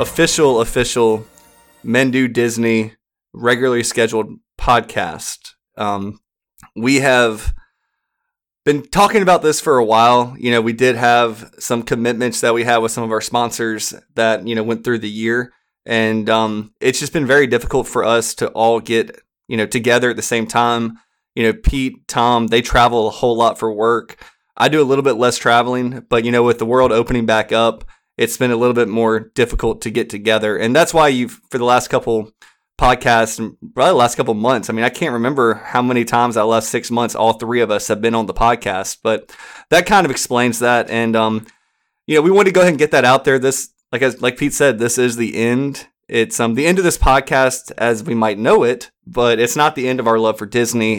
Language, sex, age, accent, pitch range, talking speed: English, male, 20-39, American, 110-125 Hz, 215 wpm